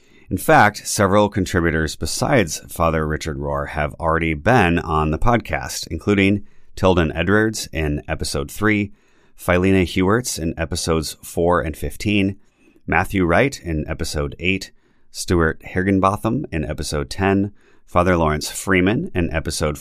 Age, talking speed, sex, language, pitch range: 30-49, 125 wpm, male, English, 75-95 Hz